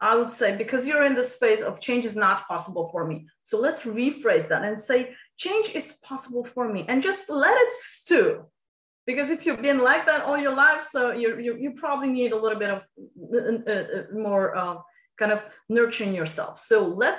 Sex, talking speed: female, 205 wpm